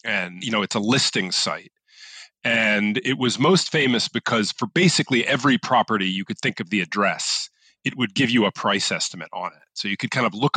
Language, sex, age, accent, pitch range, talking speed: English, male, 40-59, American, 105-155 Hz, 215 wpm